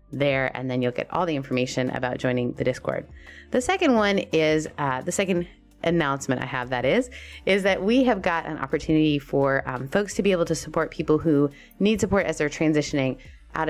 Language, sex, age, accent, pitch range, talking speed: English, female, 20-39, American, 135-180 Hz, 205 wpm